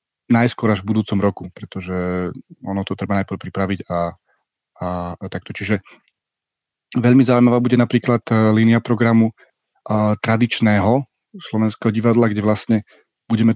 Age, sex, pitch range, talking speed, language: 40-59, male, 105-120 Hz, 125 wpm, Slovak